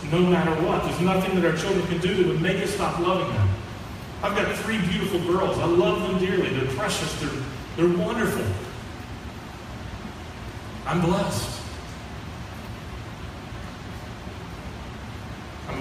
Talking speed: 130 wpm